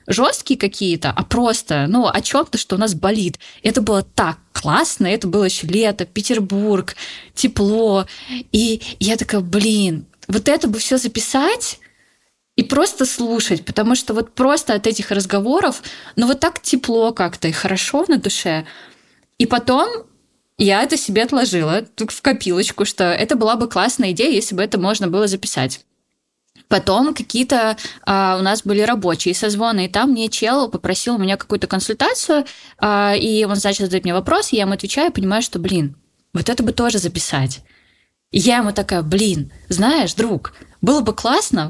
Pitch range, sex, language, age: 190-245 Hz, female, Russian, 20-39